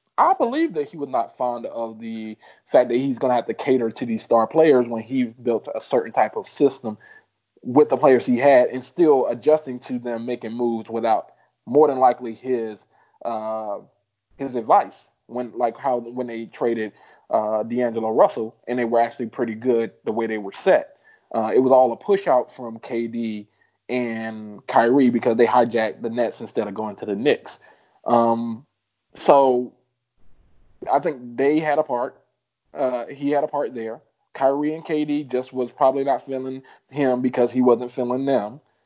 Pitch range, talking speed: 115-150 Hz, 185 wpm